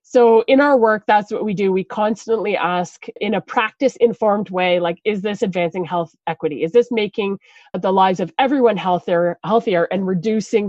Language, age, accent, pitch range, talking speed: English, 20-39, American, 185-245 Hz, 175 wpm